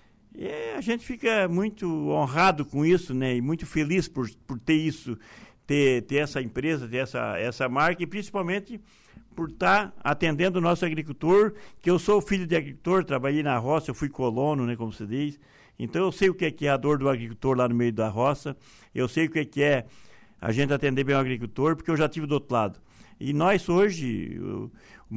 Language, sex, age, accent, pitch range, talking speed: Portuguese, male, 60-79, Brazilian, 120-150 Hz, 215 wpm